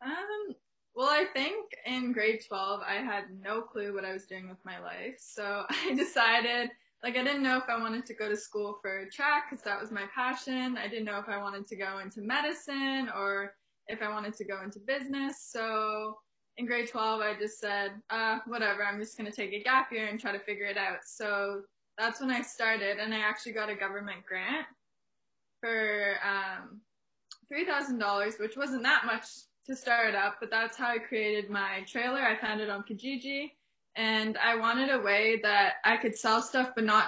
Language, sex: English, female